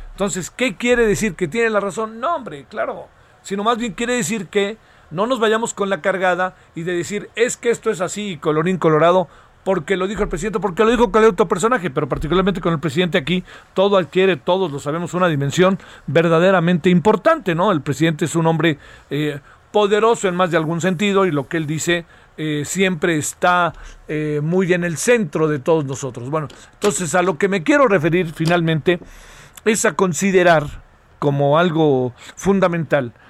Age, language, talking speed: 40-59, Spanish, 190 wpm